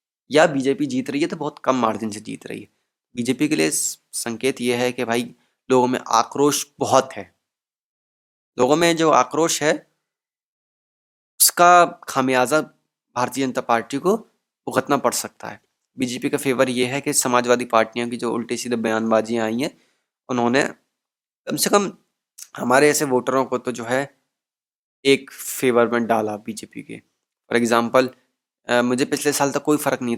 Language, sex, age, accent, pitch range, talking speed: Hindi, male, 20-39, native, 115-140 Hz, 165 wpm